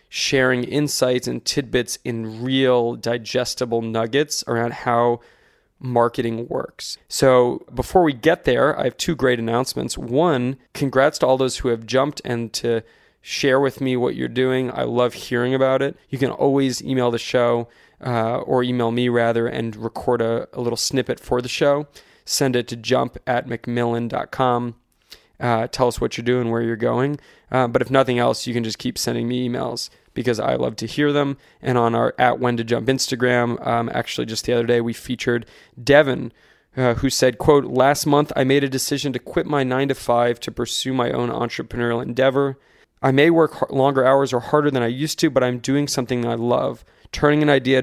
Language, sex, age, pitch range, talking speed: English, male, 20-39, 120-135 Hz, 195 wpm